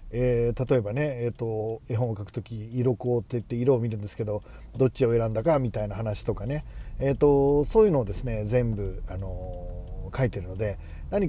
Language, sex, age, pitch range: Japanese, male, 40-59, 105-145 Hz